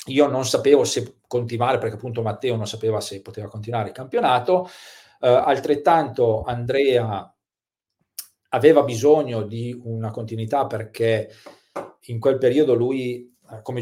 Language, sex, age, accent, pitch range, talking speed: Italian, male, 40-59, native, 110-130 Hz, 125 wpm